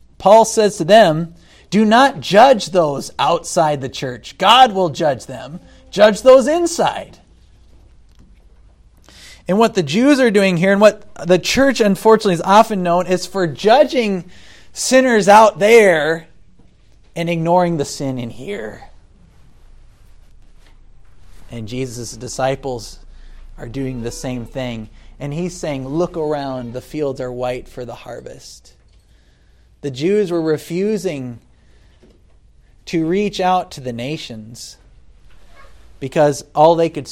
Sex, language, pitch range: male, English, 115-175 Hz